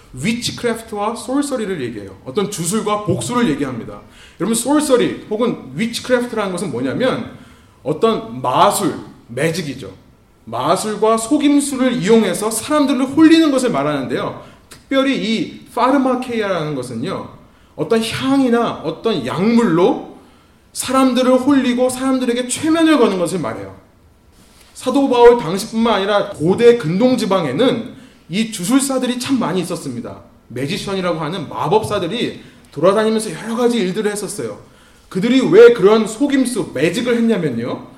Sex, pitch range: male, 195-255 Hz